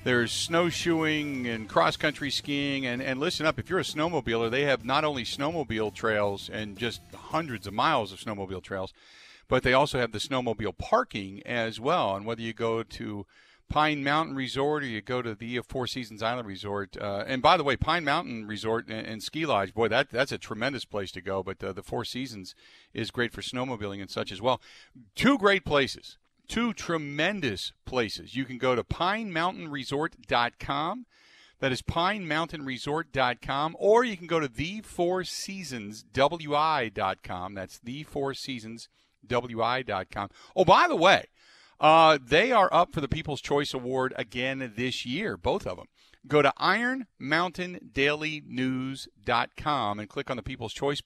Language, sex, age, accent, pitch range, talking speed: English, male, 50-69, American, 110-150 Hz, 170 wpm